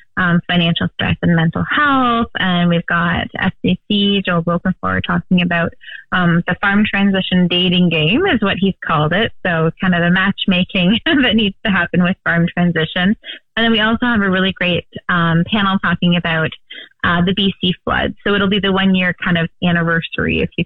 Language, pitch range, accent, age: English, 175-205 Hz, American, 20-39